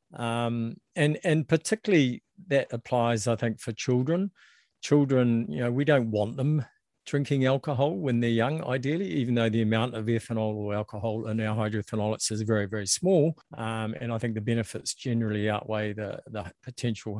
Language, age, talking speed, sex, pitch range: English, 50-69, 170 wpm, male, 105-125 Hz